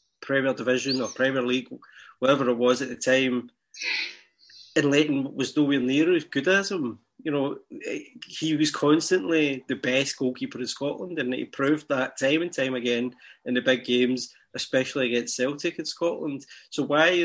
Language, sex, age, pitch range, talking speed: English, male, 20-39, 125-145 Hz, 175 wpm